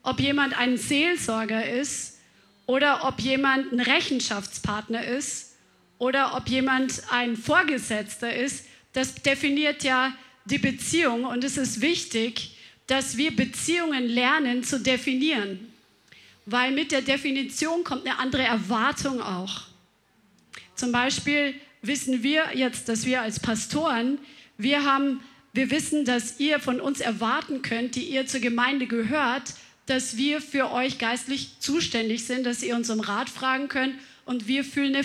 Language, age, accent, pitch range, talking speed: German, 40-59, German, 235-275 Hz, 140 wpm